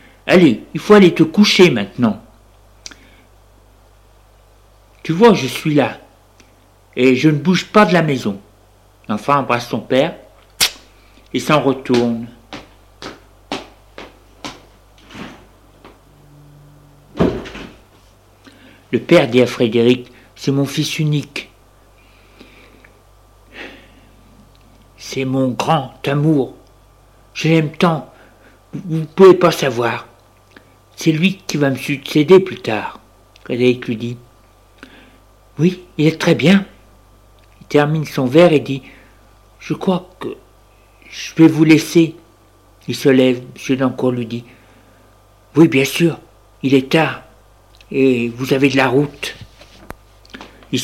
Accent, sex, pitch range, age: French, male, 110-145 Hz, 60-79